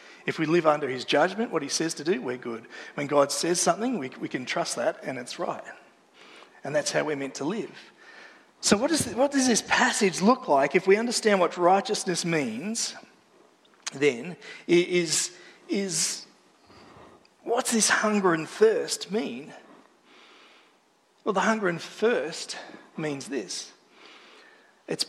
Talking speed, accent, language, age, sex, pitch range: 155 wpm, Australian, English, 40-59, male, 155-210 Hz